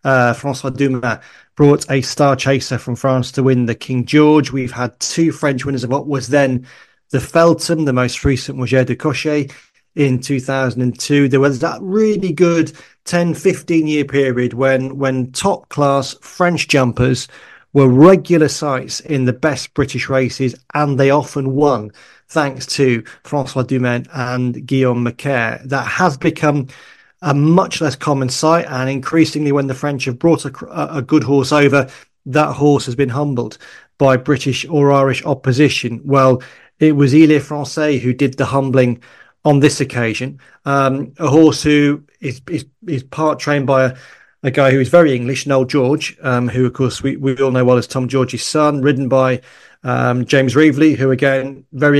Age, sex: 30-49, male